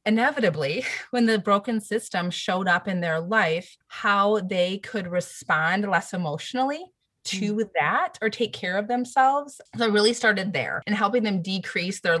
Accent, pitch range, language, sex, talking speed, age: American, 175-230 Hz, English, female, 160 wpm, 30-49